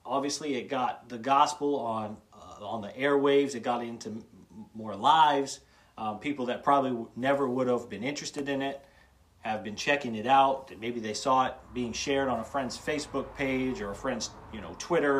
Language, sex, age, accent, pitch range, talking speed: English, male, 40-59, American, 110-140 Hz, 195 wpm